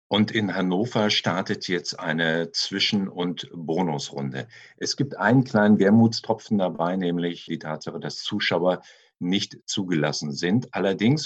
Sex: male